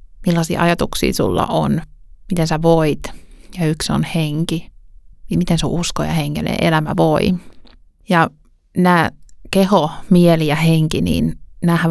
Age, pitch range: 30-49, 160-190 Hz